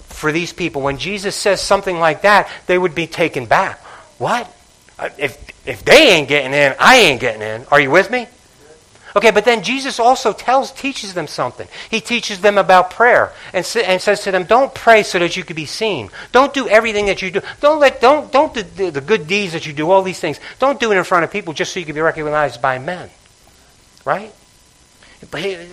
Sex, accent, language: male, American, English